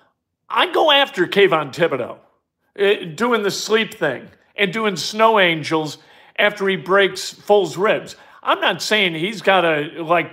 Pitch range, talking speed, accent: 170-215 Hz, 145 wpm, American